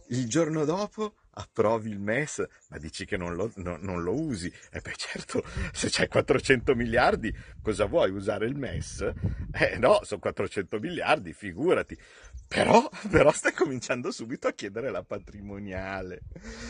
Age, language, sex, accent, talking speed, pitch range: 50-69, Italian, male, native, 150 wpm, 85-125 Hz